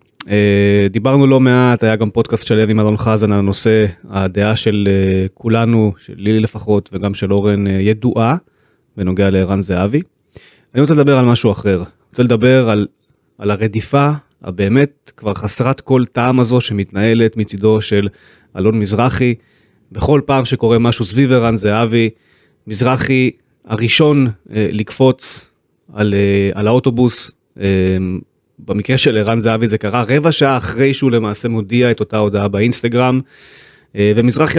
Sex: male